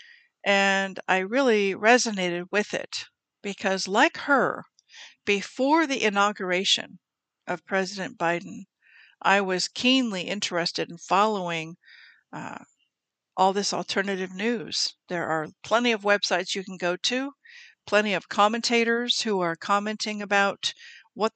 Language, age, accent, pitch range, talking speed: English, 50-69, American, 195-250 Hz, 120 wpm